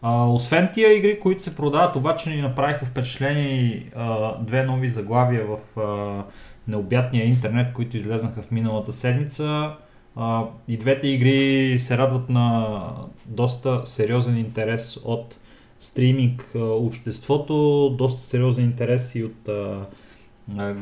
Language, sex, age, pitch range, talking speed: Bulgarian, male, 30-49, 115-135 Hz, 125 wpm